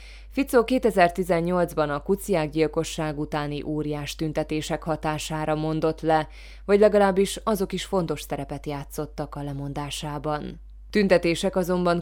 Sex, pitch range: female, 145-180 Hz